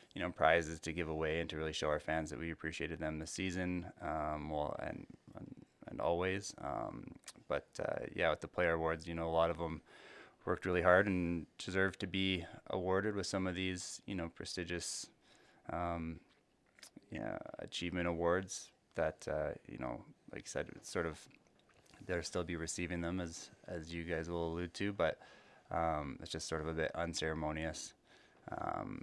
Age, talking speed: 20-39, 185 wpm